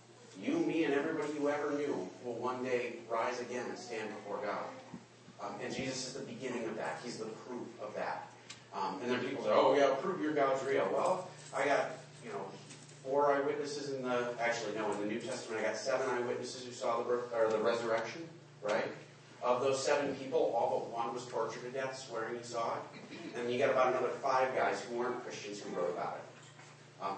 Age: 30-49